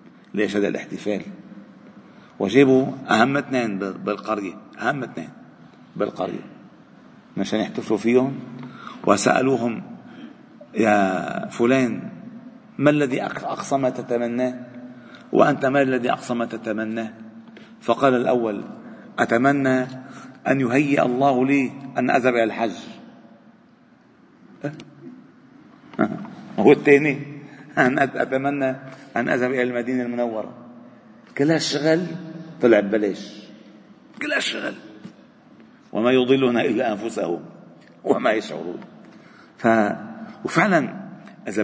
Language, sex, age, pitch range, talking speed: Arabic, male, 40-59, 120-160 Hz, 85 wpm